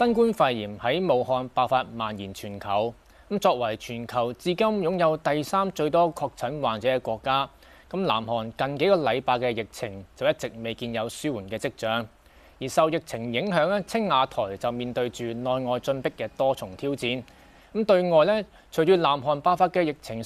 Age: 20-39